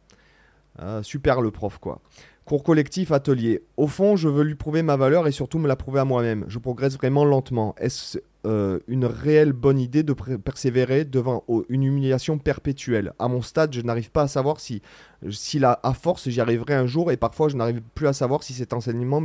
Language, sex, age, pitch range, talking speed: French, male, 30-49, 115-145 Hz, 210 wpm